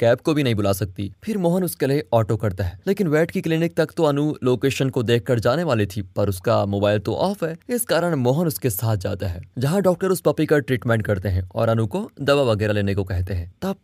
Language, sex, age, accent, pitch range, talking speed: Hindi, male, 20-39, native, 110-160 Hz, 245 wpm